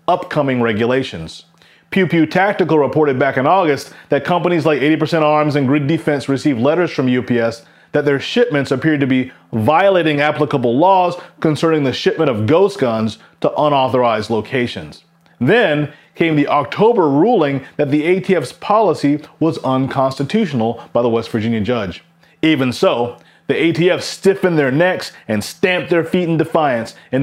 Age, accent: 30-49, American